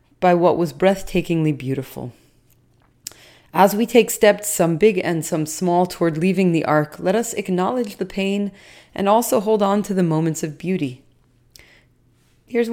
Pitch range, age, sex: 150-190 Hz, 30-49, female